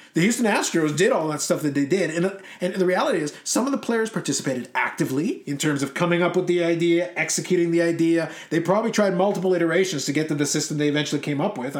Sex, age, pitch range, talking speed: male, 30-49, 155-185 Hz, 240 wpm